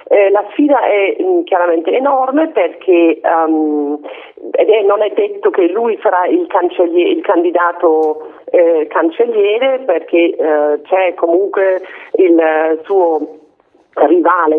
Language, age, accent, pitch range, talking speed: Italian, 40-59, native, 160-270 Hz, 125 wpm